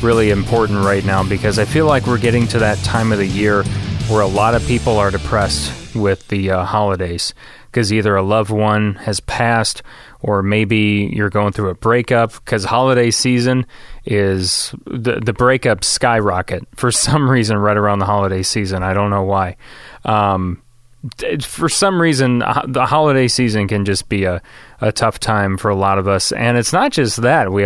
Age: 30-49